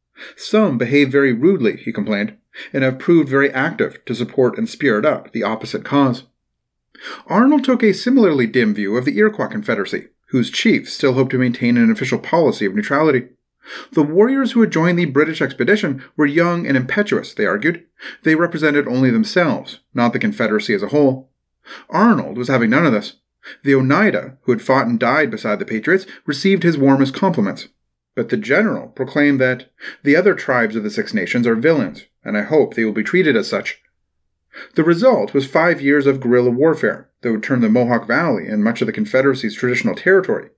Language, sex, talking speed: English, male, 190 wpm